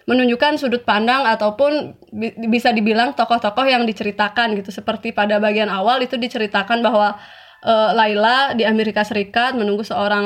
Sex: female